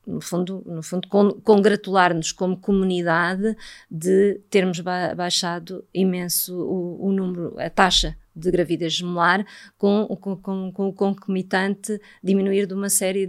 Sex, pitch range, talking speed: female, 175-200 Hz, 135 wpm